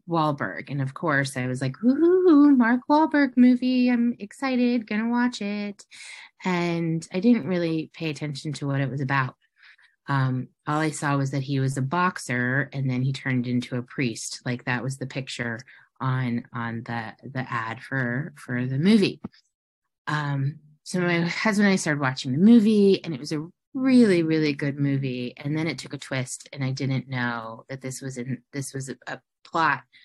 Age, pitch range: 30-49, 130-165 Hz